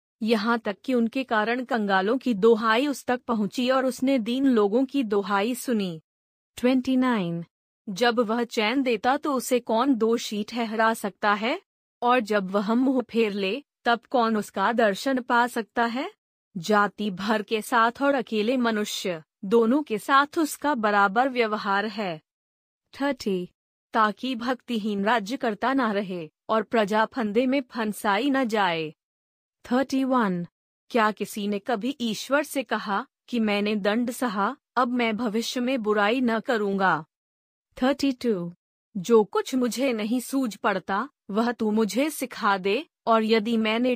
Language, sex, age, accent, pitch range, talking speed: Hindi, female, 30-49, native, 210-255 Hz, 150 wpm